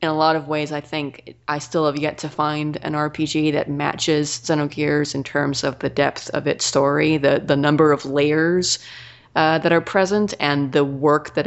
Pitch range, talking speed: 140-155 Hz, 205 wpm